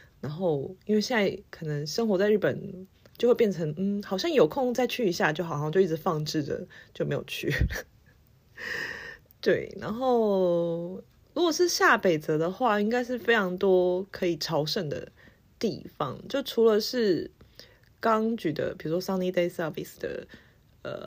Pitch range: 170-230 Hz